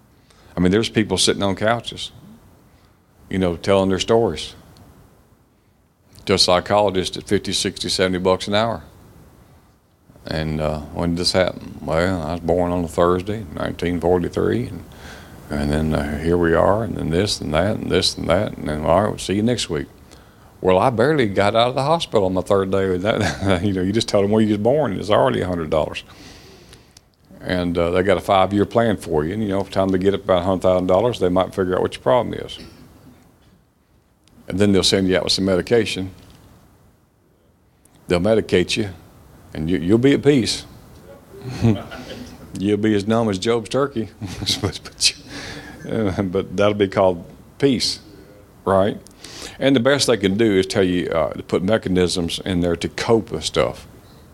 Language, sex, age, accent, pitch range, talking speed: English, male, 50-69, American, 90-105 Hz, 185 wpm